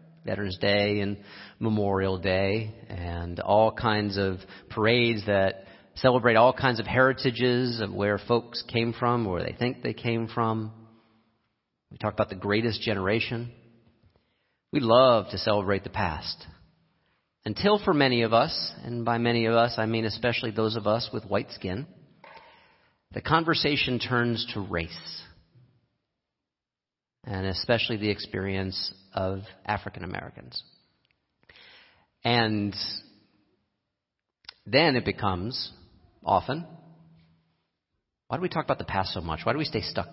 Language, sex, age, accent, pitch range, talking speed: English, male, 40-59, American, 100-125 Hz, 135 wpm